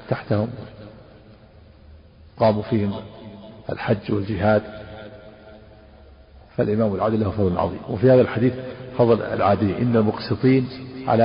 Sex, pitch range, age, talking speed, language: male, 105-125 Hz, 50-69, 95 wpm, Arabic